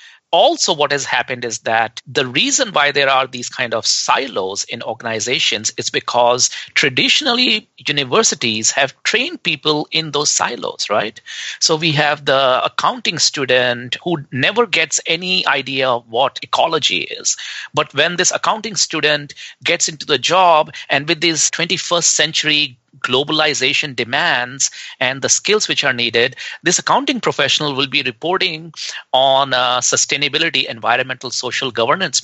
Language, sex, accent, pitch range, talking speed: English, male, Indian, 125-170 Hz, 140 wpm